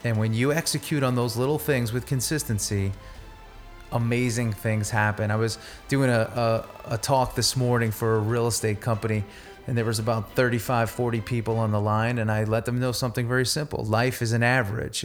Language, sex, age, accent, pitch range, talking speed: English, male, 30-49, American, 110-125 Hz, 195 wpm